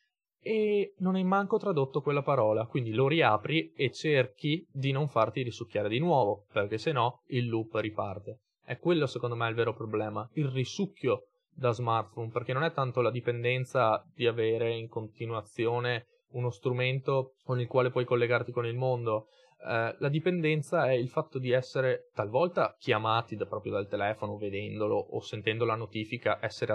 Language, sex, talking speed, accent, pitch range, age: Italian, male, 165 wpm, native, 110-130 Hz, 20-39